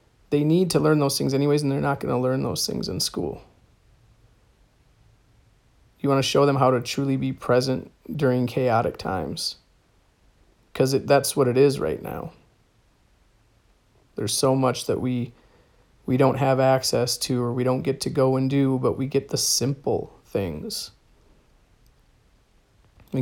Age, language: 40-59, English